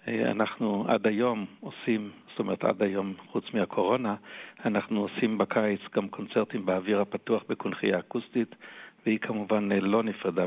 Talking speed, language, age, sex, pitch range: 130 wpm, Hebrew, 60-79, male, 100-110 Hz